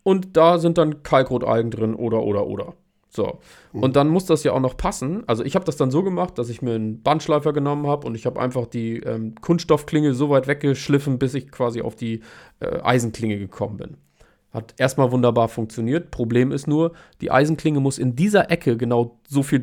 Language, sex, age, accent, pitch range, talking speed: German, male, 40-59, German, 120-155 Hz, 205 wpm